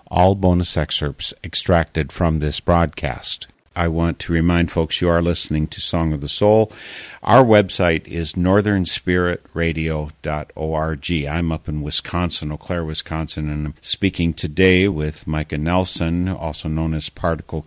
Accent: American